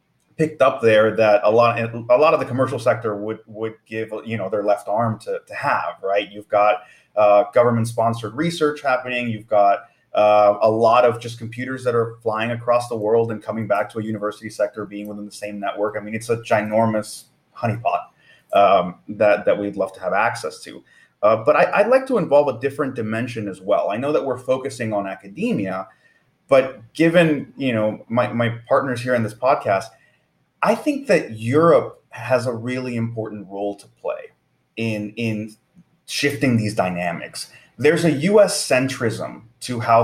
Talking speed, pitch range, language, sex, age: 185 wpm, 105-130 Hz, English, male, 30-49